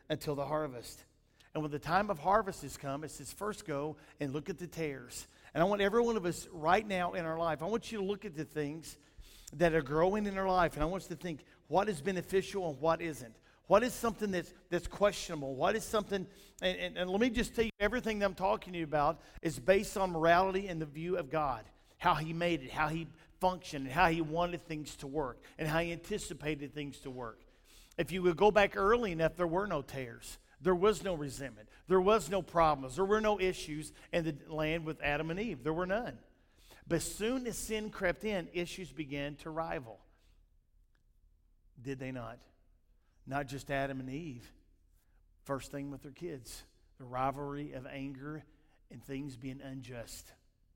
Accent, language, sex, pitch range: American, English, male, 140-185 Hz